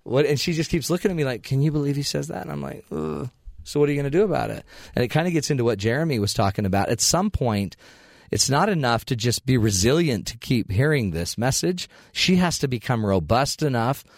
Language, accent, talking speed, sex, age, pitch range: English, American, 255 wpm, male, 40-59, 100-135 Hz